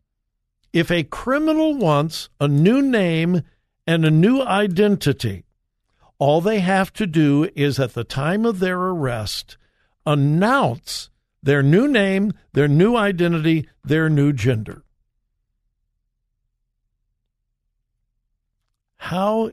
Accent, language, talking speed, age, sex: American, English, 105 wpm, 60-79, male